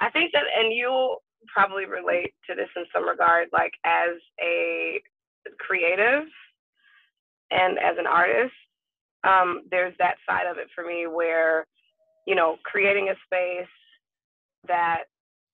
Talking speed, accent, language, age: 135 wpm, American, English, 20-39